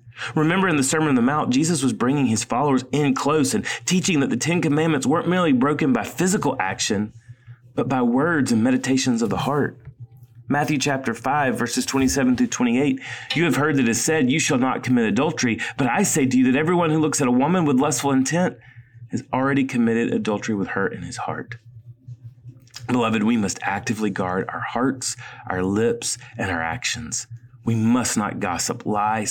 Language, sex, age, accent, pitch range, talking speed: English, male, 30-49, American, 115-135 Hz, 190 wpm